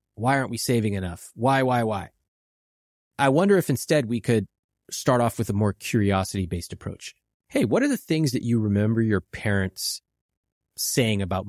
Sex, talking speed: male, 170 wpm